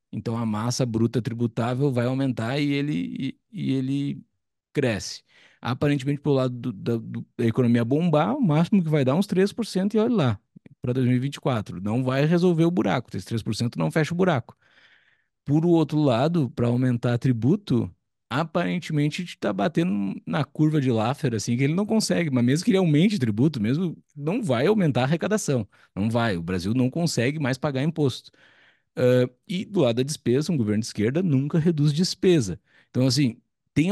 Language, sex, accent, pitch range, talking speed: Portuguese, male, Brazilian, 120-155 Hz, 180 wpm